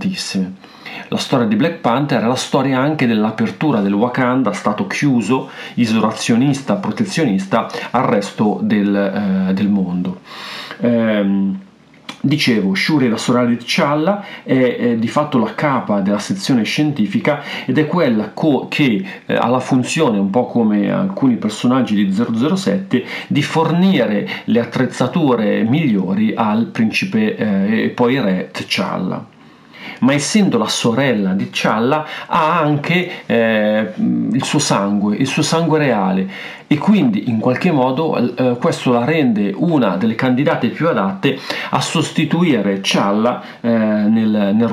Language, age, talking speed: Italian, 40-59, 135 wpm